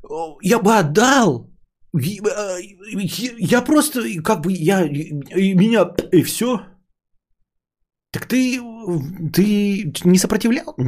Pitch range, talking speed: 135-195 Hz, 90 wpm